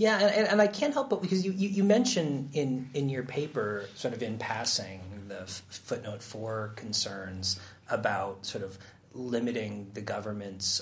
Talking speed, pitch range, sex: 170 wpm, 100-130 Hz, male